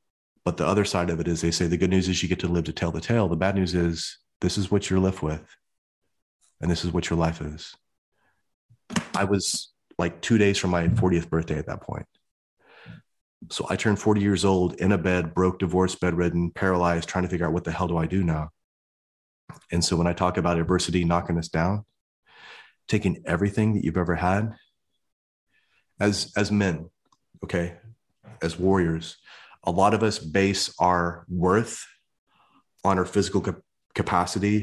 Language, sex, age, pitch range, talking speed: English, male, 30-49, 85-105 Hz, 185 wpm